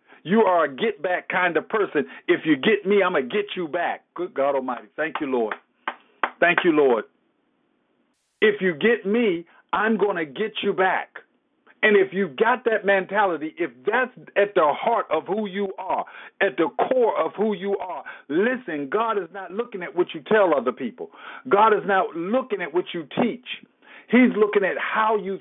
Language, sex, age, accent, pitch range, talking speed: English, male, 50-69, American, 180-235 Hz, 195 wpm